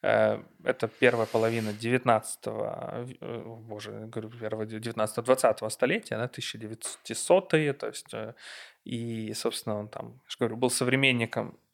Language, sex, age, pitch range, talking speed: Ukrainian, male, 20-39, 115-130 Hz, 105 wpm